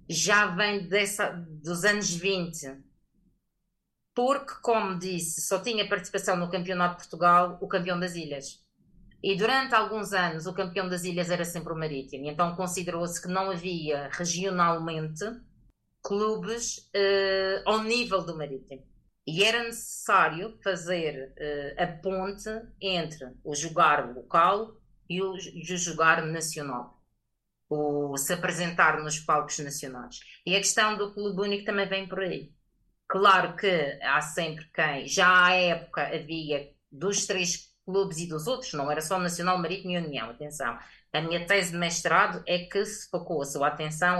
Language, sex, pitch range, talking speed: Portuguese, female, 155-195 Hz, 150 wpm